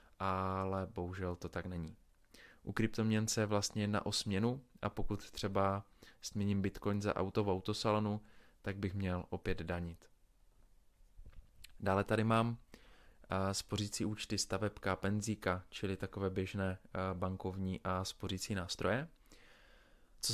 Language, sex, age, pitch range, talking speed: Czech, male, 20-39, 95-110 Hz, 120 wpm